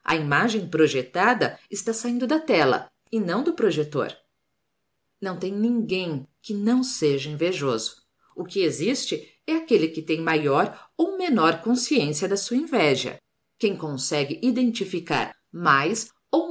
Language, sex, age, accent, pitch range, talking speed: Portuguese, female, 50-69, Brazilian, 160-245 Hz, 135 wpm